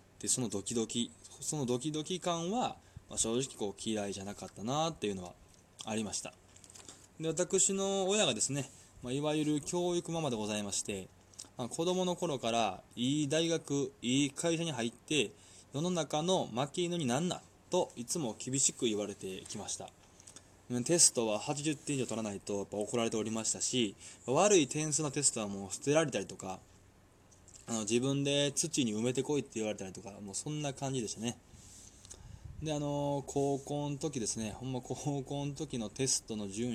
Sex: male